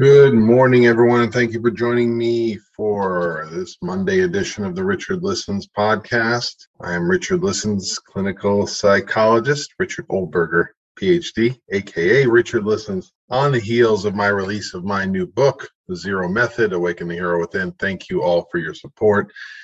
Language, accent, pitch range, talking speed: English, American, 100-145 Hz, 160 wpm